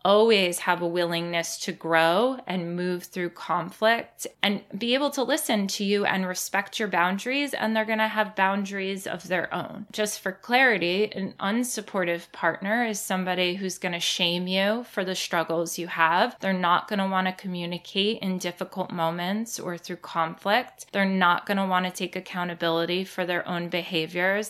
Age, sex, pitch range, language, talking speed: 20-39, female, 180-220 Hz, English, 180 wpm